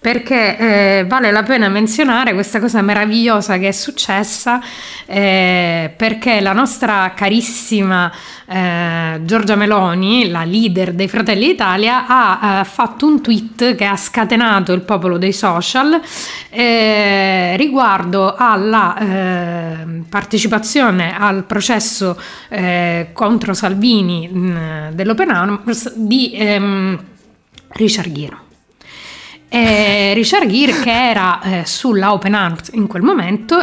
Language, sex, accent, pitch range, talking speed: Italian, female, native, 195-235 Hz, 120 wpm